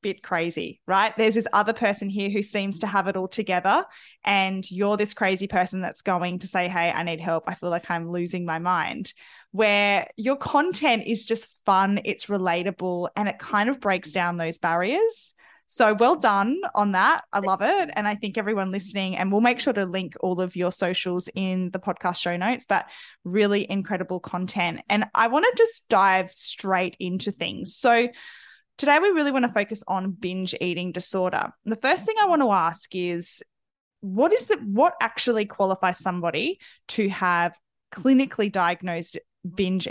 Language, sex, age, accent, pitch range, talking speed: English, female, 10-29, Australian, 180-225 Hz, 185 wpm